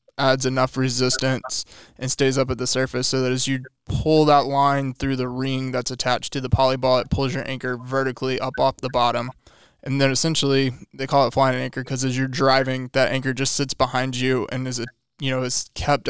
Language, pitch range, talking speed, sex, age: English, 130-135 Hz, 220 wpm, male, 20-39